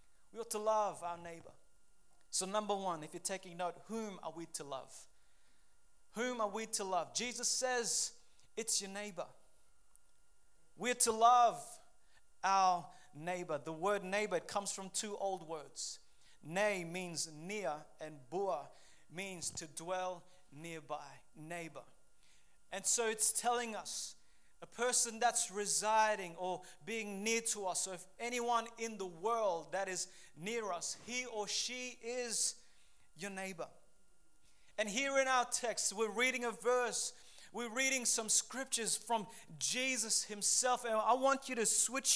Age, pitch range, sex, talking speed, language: 30-49, 185-240 Hz, male, 145 wpm, English